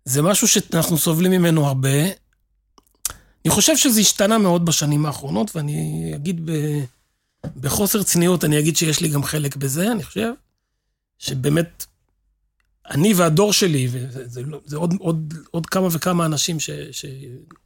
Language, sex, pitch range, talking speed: Hebrew, male, 140-190 Hz, 145 wpm